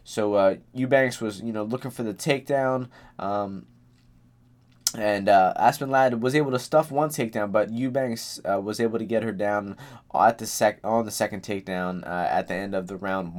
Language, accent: English, American